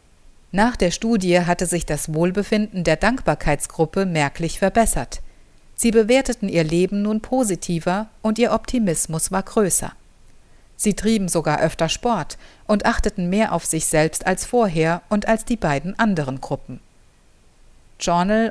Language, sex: German, female